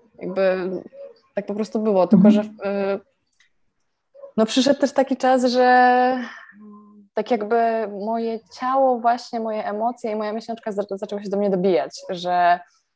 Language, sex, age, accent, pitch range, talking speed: Polish, female, 20-39, native, 195-230 Hz, 135 wpm